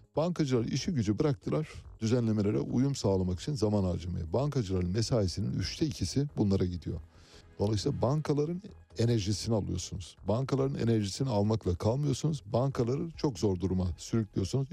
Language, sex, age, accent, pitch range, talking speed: Turkish, male, 60-79, native, 95-125 Hz, 120 wpm